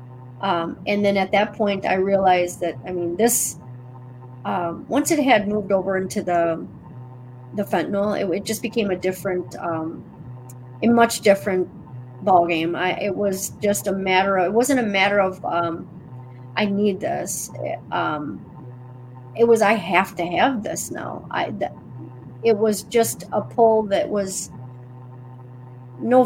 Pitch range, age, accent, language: 155-205 Hz, 30-49, American, English